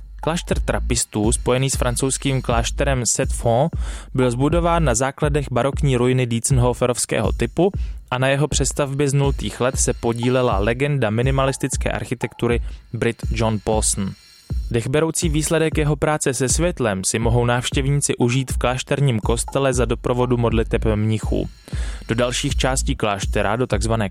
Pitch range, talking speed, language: 105-130 Hz, 130 wpm, Czech